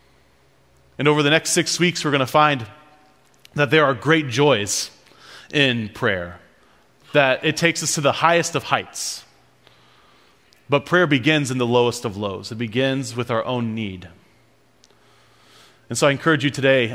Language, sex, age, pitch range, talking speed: English, male, 30-49, 110-140 Hz, 165 wpm